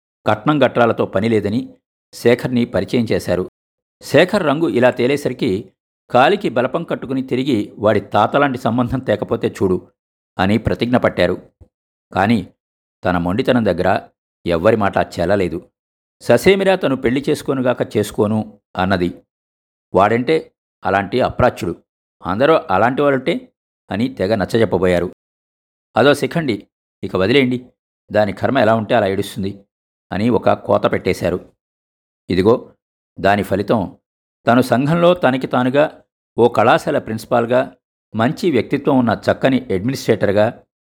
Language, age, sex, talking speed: Telugu, 50-69, male, 105 wpm